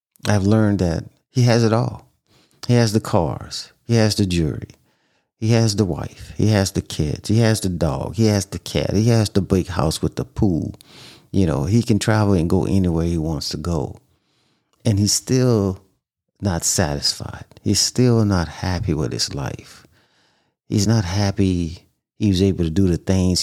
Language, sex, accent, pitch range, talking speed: English, male, American, 90-110 Hz, 185 wpm